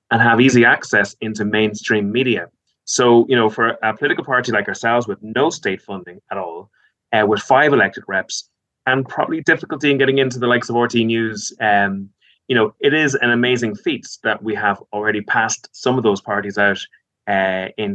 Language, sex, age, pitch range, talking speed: English, male, 20-39, 105-130 Hz, 195 wpm